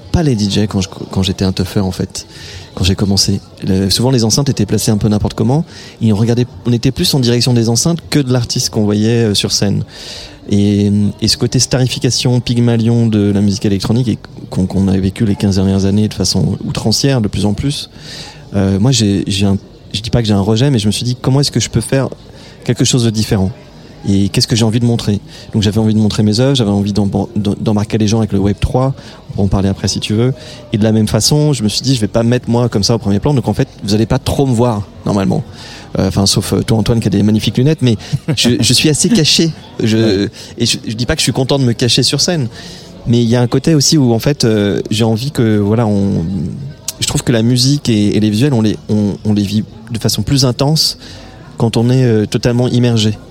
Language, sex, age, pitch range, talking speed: French, male, 30-49, 105-125 Hz, 255 wpm